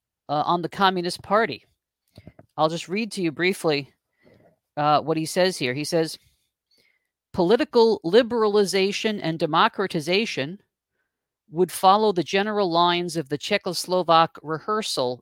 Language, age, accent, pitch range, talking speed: English, 50-69, American, 160-210 Hz, 120 wpm